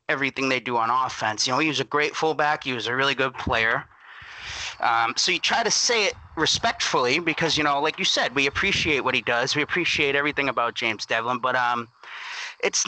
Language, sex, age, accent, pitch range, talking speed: English, male, 30-49, American, 130-175 Hz, 215 wpm